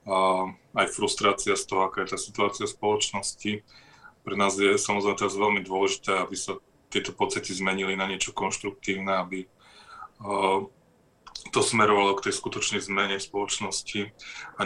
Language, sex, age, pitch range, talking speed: Czech, male, 20-39, 95-100 Hz, 145 wpm